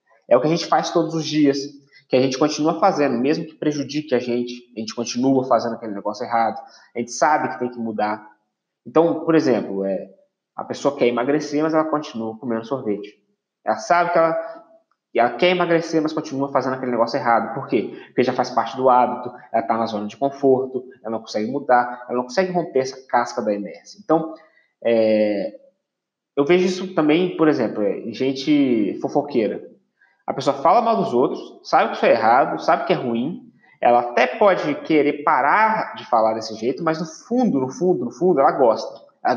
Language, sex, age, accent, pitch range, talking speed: Portuguese, male, 20-39, Brazilian, 120-160 Hz, 200 wpm